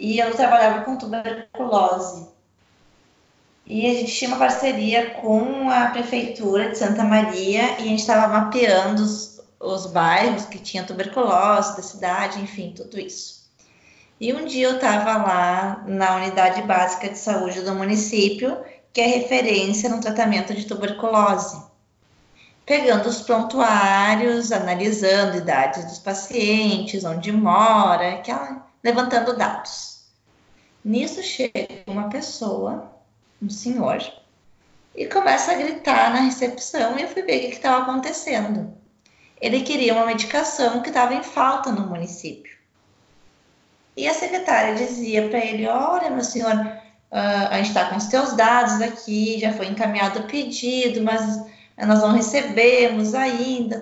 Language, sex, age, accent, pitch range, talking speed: Portuguese, female, 20-39, Brazilian, 205-250 Hz, 135 wpm